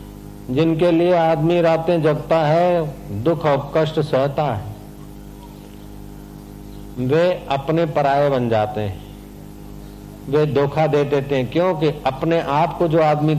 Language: Hindi